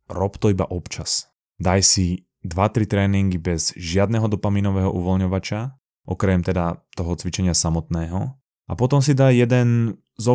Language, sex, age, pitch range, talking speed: Slovak, male, 20-39, 85-105 Hz, 140 wpm